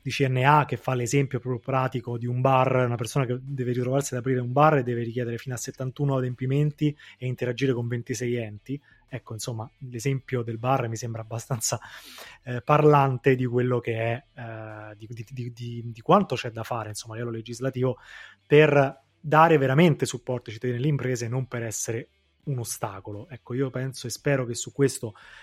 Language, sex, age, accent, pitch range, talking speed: Italian, male, 20-39, native, 120-140 Hz, 190 wpm